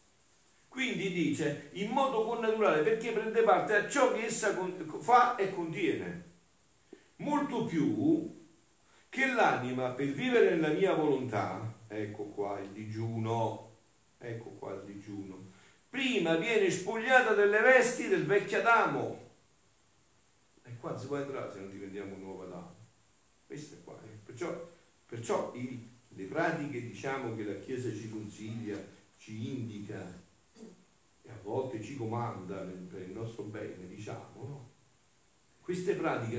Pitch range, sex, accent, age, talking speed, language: 100-165 Hz, male, native, 50-69, 130 wpm, Italian